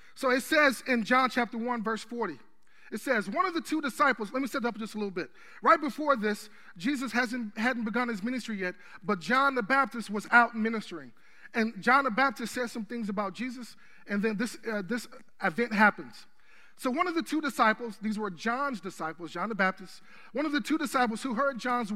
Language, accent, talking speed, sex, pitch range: English, American, 215 wpm, male, 215-275 Hz